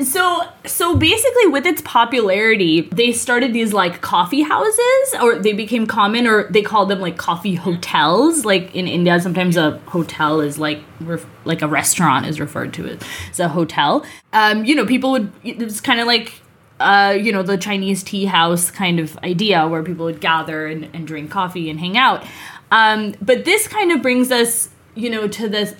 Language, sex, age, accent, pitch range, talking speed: English, female, 20-39, American, 180-235 Hz, 195 wpm